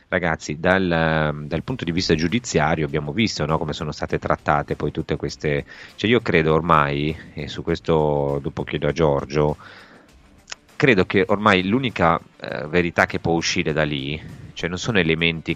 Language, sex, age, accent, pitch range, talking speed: Italian, male, 30-49, native, 75-90 Hz, 165 wpm